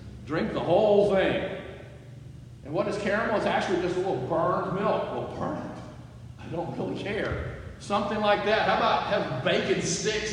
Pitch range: 125-185 Hz